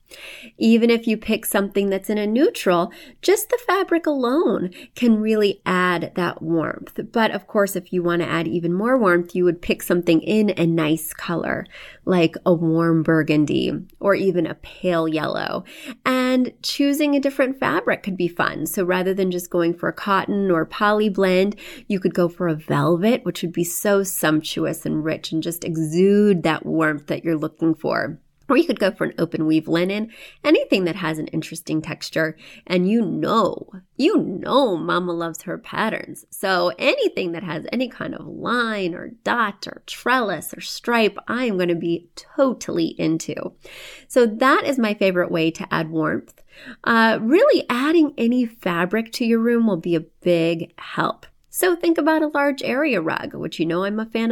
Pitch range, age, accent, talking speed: 170-230 Hz, 30-49, American, 185 wpm